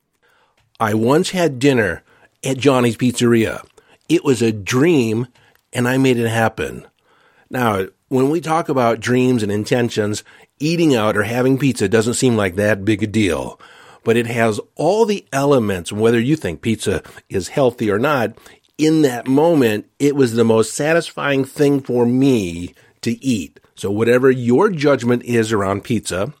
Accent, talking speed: American, 160 wpm